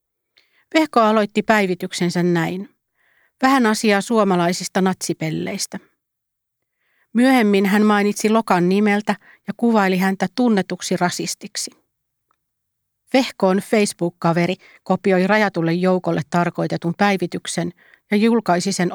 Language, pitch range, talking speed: Finnish, 175-210 Hz, 90 wpm